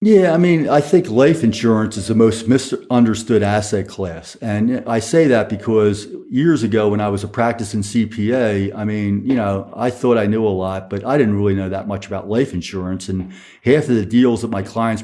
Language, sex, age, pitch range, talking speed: English, male, 50-69, 100-115 Hz, 215 wpm